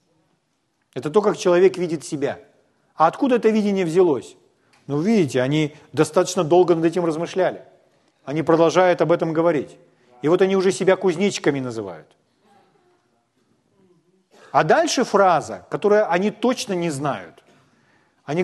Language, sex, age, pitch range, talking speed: Ukrainian, male, 40-59, 170-215 Hz, 130 wpm